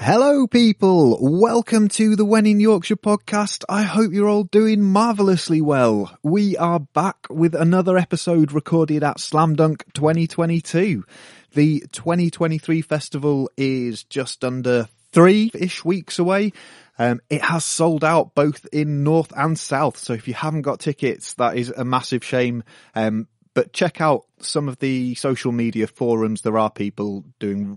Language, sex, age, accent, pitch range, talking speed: English, male, 30-49, British, 115-165 Hz, 155 wpm